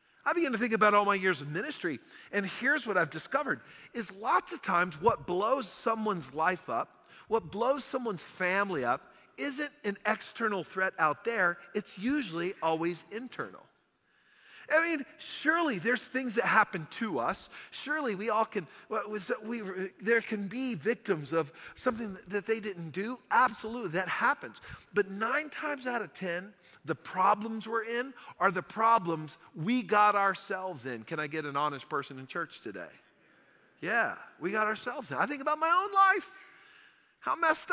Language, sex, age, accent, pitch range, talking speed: English, male, 40-59, American, 195-270 Hz, 165 wpm